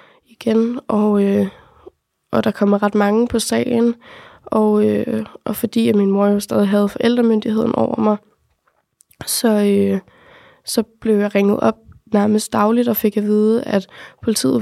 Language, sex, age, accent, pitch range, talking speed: Danish, female, 20-39, native, 205-230 Hz, 150 wpm